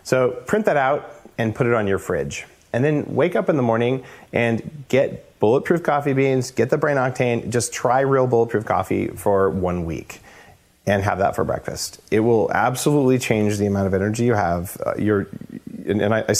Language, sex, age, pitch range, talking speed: English, male, 40-59, 105-140 Hz, 200 wpm